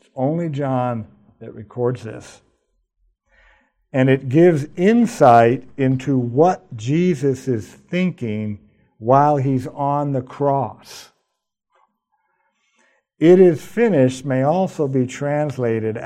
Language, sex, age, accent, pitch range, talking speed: English, male, 50-69, American, 115-145 Hz, 95 wpm